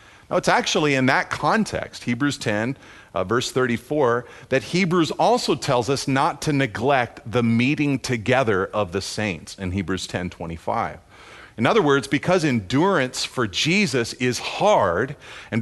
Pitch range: 115-165 Hz